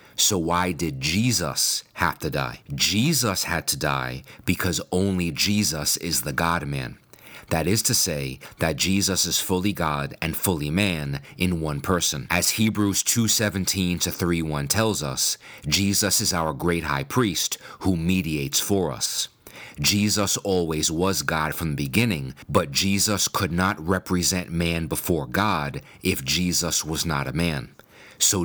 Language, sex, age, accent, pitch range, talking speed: English, male, 40-59, American, 75-95 Hz, 145 wpm